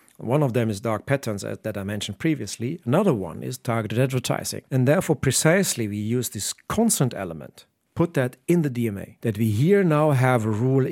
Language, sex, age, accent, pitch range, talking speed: English, male, 50-69, German, 105-140 Hz, 200 wpm